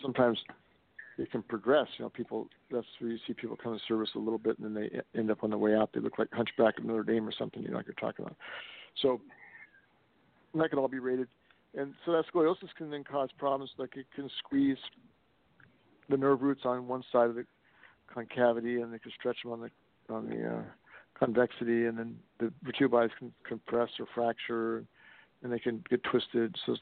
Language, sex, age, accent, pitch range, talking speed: English, male, 50-69, American, 115-130 Hz, 215 wpm